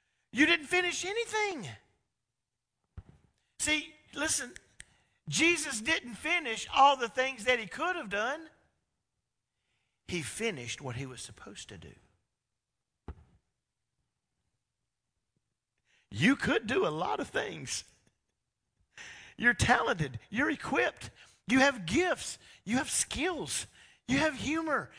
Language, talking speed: English, 110 wpm